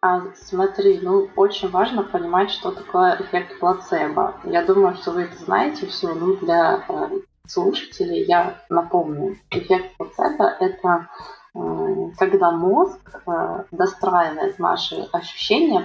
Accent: native